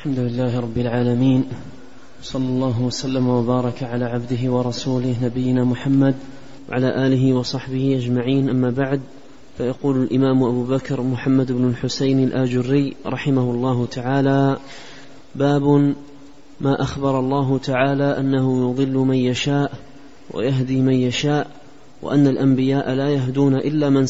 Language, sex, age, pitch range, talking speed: Arabic, male, 30-49, 130-140 Hz, 120 wpm